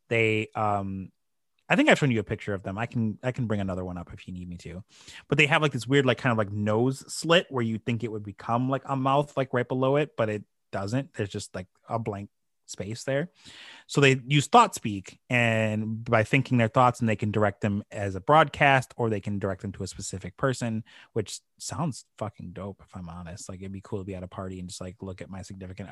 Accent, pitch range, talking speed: American, 100-140 Hz, 250 wpm